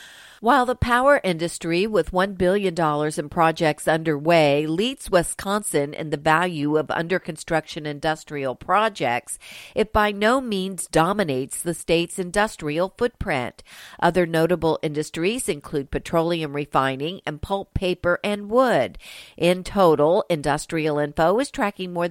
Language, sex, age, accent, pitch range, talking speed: English, female, 50-69, American, 155-200 Hz, 125 wpm